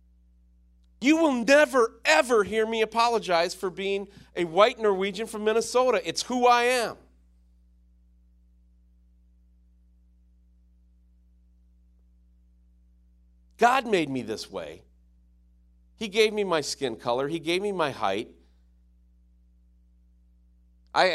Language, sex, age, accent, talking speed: English, male, 40-59, American, 100 wpm